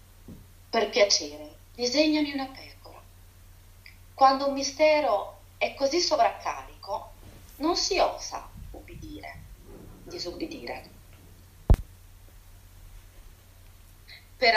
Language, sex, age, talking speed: Italian, female, 30-49, 70 wpm